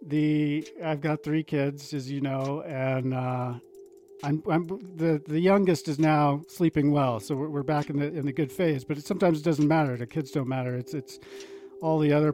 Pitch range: 130-160 Hz